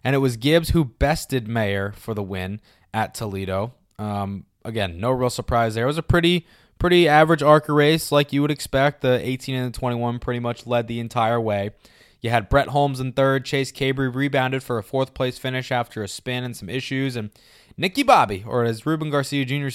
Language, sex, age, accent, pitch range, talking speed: English, male, 20-39, American, 110-130 Hz, 205 wpm